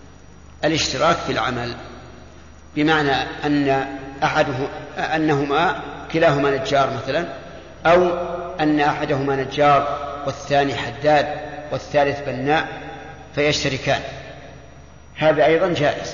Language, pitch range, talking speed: Arabic, 135-160 Hz, 80 wpm